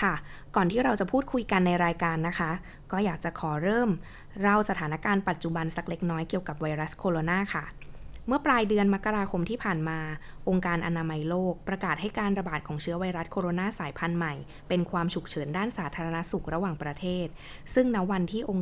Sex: female